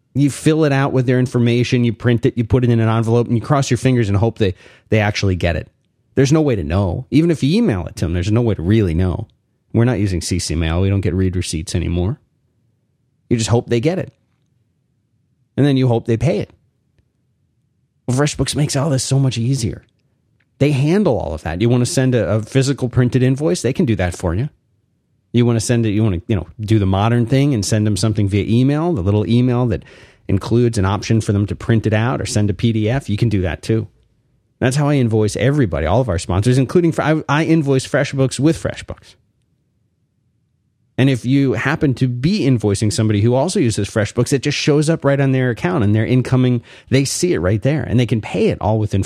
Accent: American